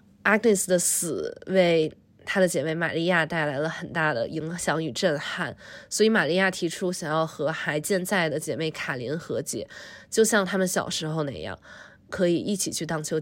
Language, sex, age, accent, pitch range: Chinese, female, 20-39, native, 155-190 Hz